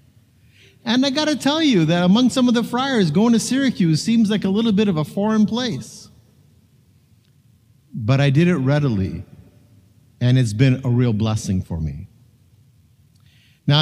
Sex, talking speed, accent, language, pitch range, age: male, 165 wpm, American, English, 115-155 Hz, 50-69